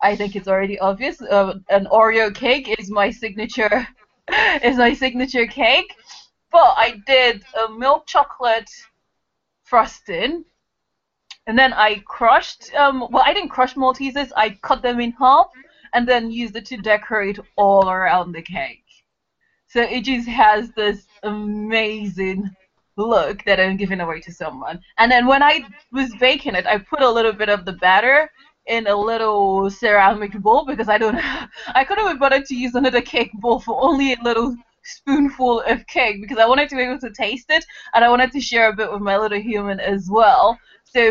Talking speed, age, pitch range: 180 wpm, 20-39, 205-270 Hz